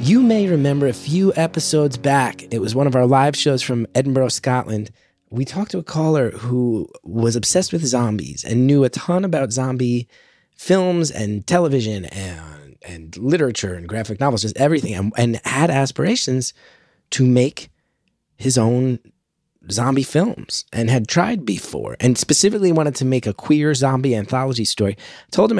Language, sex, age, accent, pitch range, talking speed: English, male, 20-39, American, 115-145 Hz, 165 wpm